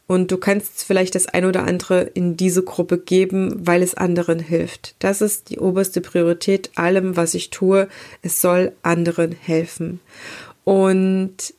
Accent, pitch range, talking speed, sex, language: German, 175-220 Hz, 155 wpm, female, German